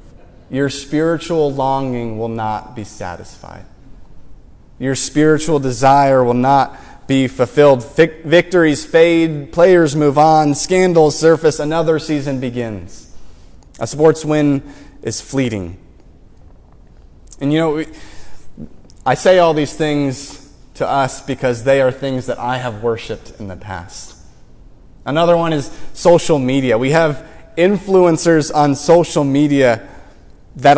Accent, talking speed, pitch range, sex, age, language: American, 120 wpm, 130-155 Hz, male, 30-49, English